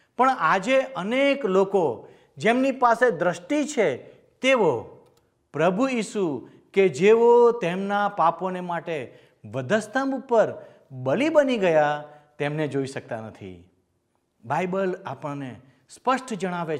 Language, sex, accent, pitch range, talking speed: Gujarati, male, native, 135-220 Hz, 95 wpm